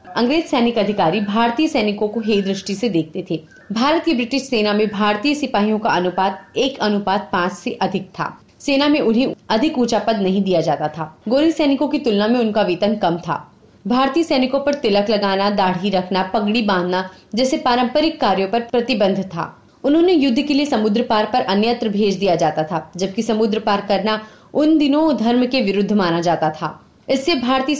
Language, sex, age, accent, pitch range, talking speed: Hindi, female, 30-49, native, 195-265 Hz, 185 wpm